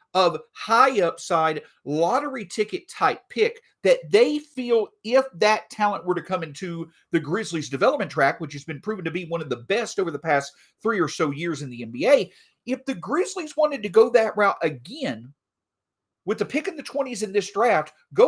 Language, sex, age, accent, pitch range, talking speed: English, male, 40-59, American, 170-270 Hz, 195 wpm